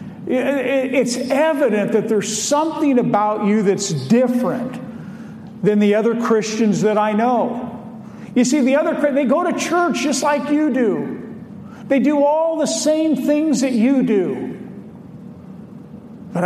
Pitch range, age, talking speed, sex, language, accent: 195-245 Hz, 50-69, 140 wpm, male, English, American